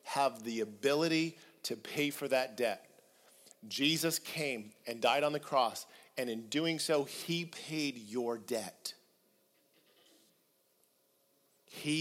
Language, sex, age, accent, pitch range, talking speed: English, male, 40-59, American, 120-145 Hz, 120 wpm